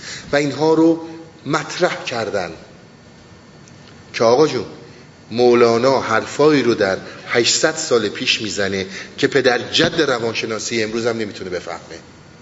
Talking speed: 115 wpm